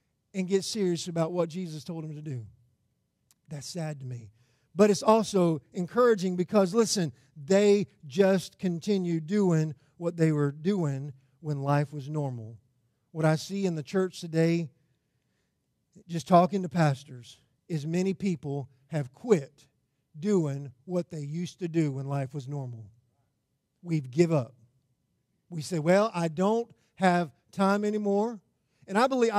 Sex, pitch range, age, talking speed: male, 140-210 Hz, 50-69, 150 wpm